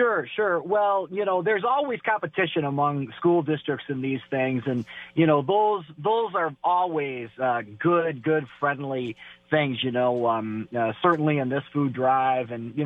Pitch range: 125-160 Hz